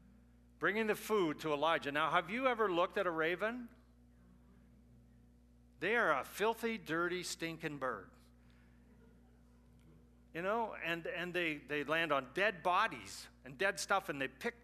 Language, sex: English, male